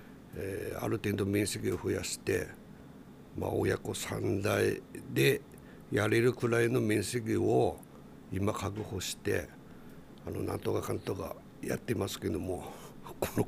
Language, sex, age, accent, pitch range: Japanese, male, 60-79, native, 105-130 Hz